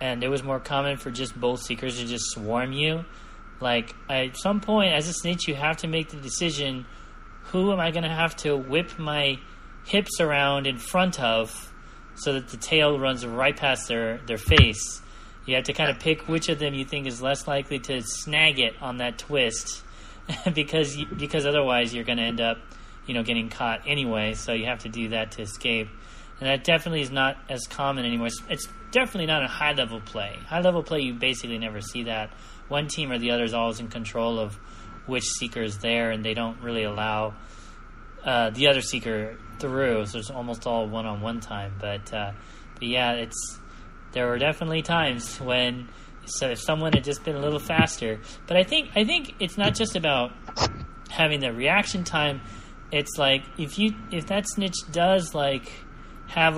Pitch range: 115-155 Hz